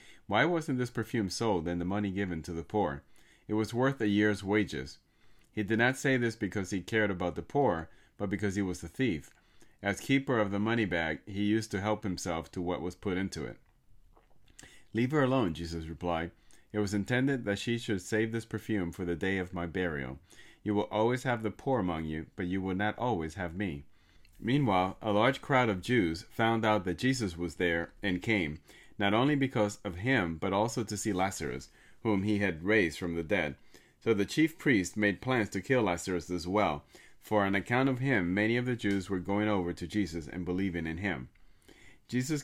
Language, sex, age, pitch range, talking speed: English, male, 30-49, 90-110 Hz, 210 wpm